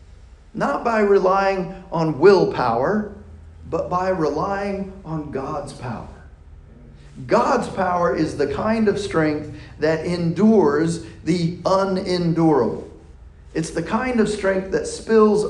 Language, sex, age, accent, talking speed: English, male, 40-59, American, 110 wpm